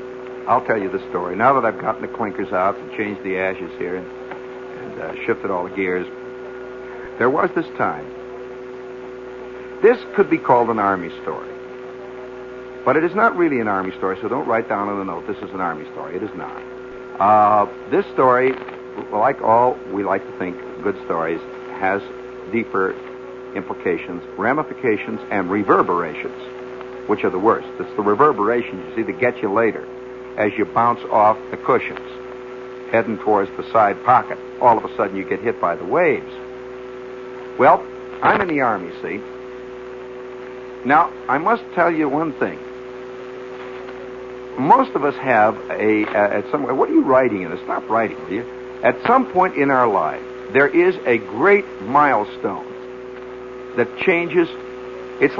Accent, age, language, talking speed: American, 60-79, English, 165 wpm